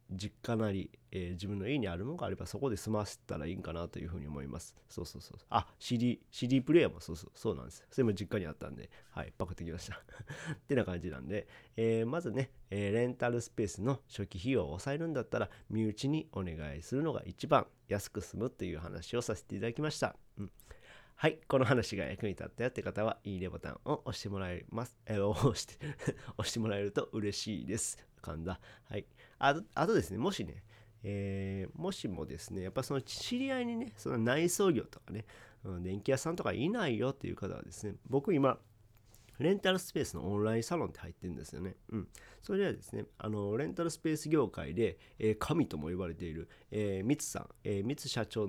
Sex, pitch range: male, 95-135 Hz